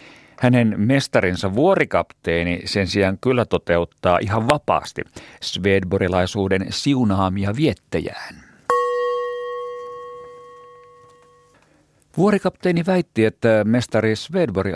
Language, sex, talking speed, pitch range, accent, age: Finnish, male, 70 wpm, 100-120 Hz, native, 50-69